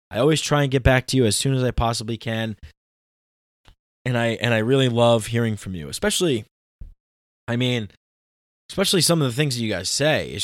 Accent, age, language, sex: American, 20-39, English, male